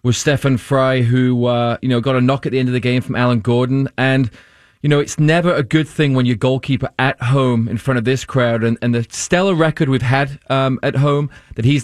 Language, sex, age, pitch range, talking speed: English, male, 30-49, 125-145 Hz, 250 wpm